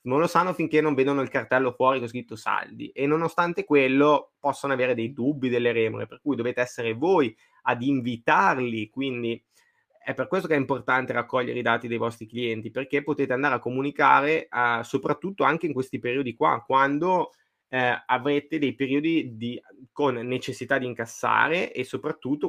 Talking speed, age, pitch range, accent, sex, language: 165 wpm, 20-39, 120-140 Hz, native, male, Italian